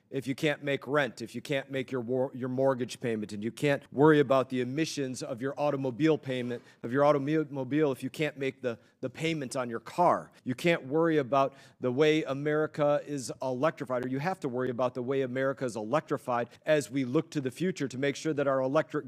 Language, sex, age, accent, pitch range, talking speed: English, male, 40-59, American, 130-155 Hz, 220 wpm